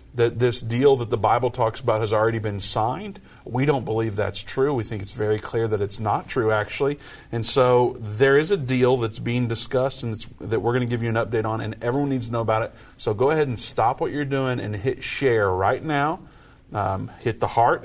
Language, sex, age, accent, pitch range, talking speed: English, male, 50-69, American, 105-130 Hz, 235 wpm